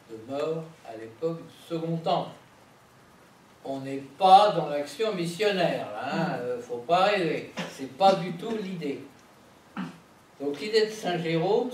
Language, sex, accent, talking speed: French, male, French, 150 wpm